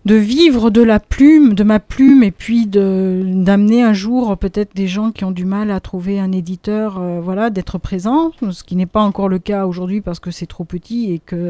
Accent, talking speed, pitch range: French, 230 wpm, 185-225 Hz